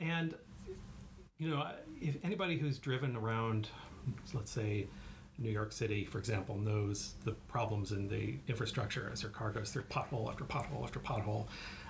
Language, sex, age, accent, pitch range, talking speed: English, male, 40-59, American, 110-140 Hz, 155 wpm